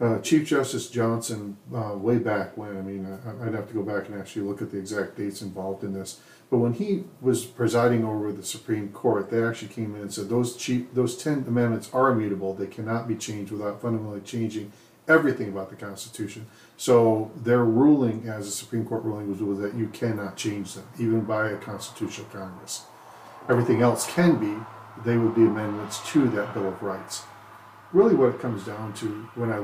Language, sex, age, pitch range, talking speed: English, male, 50-69, 100-120 Hz, 195 wpm